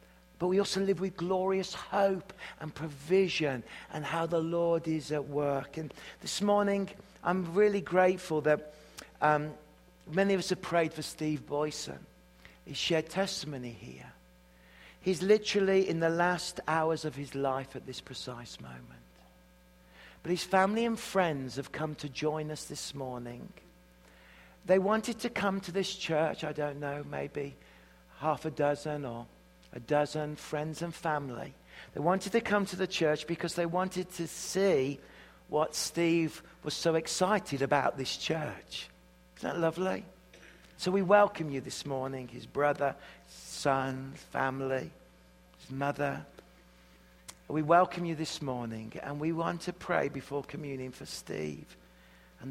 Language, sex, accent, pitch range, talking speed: English, male, British, 130-175 Hz, 150 wpm